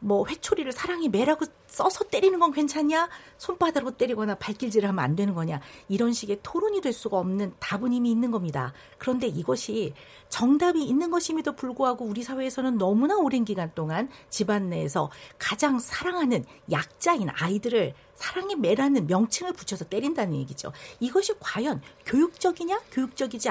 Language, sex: Korean, female